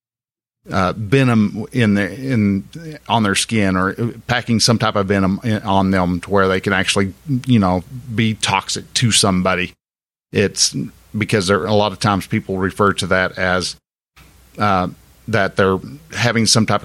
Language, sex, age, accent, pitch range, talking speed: English, male, 50-69, American, 95-115 Hz, 165 wpm